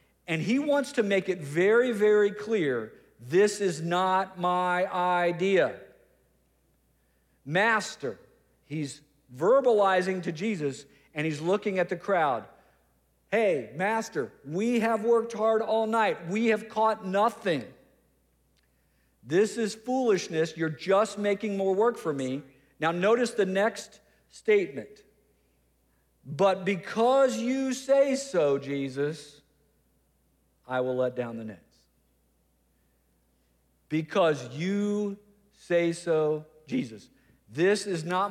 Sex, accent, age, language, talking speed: male, American, 50-69, English, 115 wpm